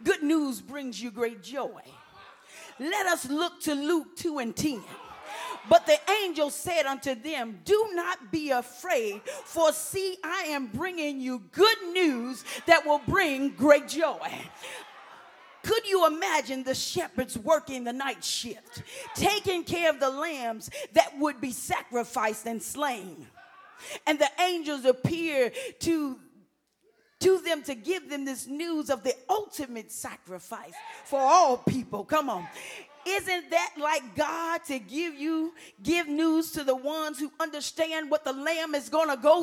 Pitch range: 270-345 Hz